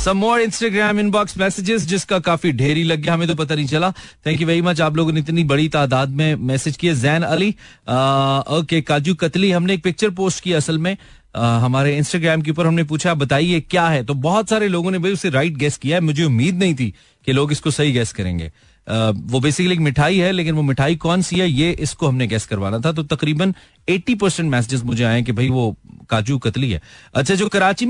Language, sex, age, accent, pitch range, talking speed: Hindi, male, 30-49, native, 135-190 Hz, 150 wpm